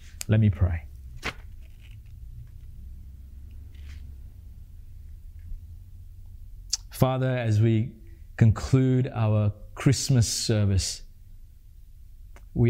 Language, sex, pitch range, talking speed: English, male, 95-120 Hz, 50 wpm